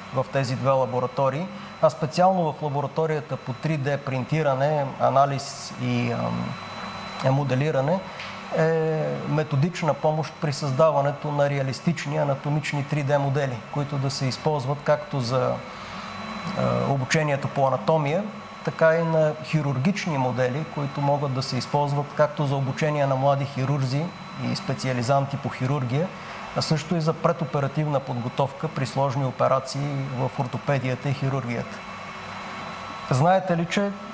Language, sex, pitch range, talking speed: Bulgarian, male, 135-160 Hz, 120 wpm